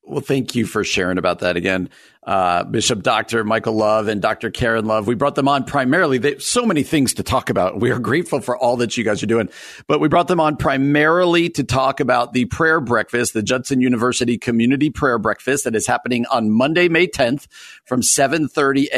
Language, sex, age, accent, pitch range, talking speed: English, male, 50-69, American, 125-175 Hz, 210 wpm